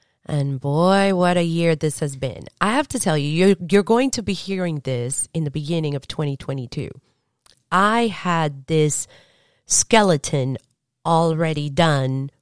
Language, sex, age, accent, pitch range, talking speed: English, female, 30-49, American, 140-185 Hz, 150 wpm